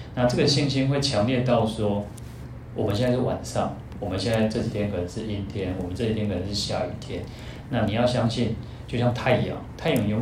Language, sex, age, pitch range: Chinese, male, 30-49, 105-125 Hz